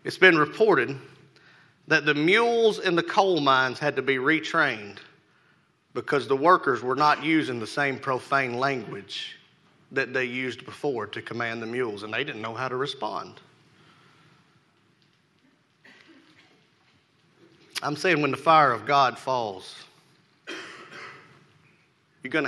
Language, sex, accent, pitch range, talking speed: English, male, American, 125-160 Hz, 130 wpm